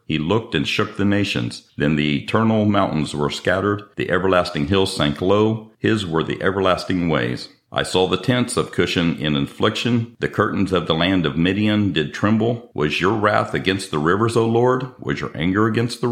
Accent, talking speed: American, 195 wpm